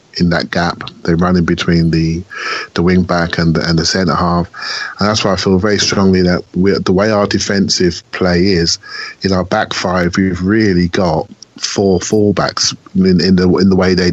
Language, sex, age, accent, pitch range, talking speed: English, male, 30-49, British, 90-110 Hz, 200 wpm